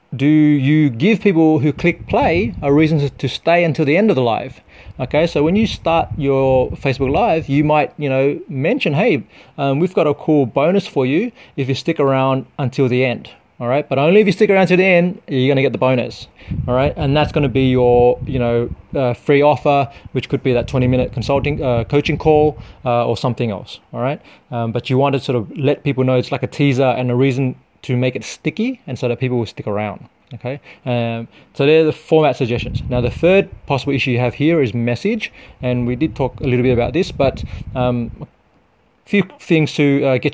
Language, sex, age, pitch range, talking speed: English, male, 30-49, 125-150 Hz, 230 wpm